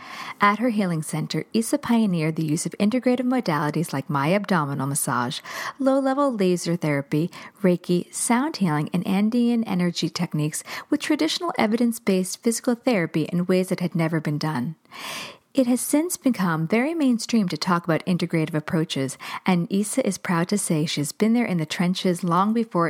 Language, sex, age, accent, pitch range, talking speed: English, female, 40-59, American, 165-235 Hz, 165 wpm